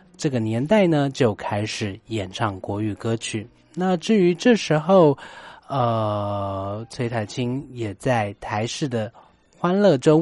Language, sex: Chinese, male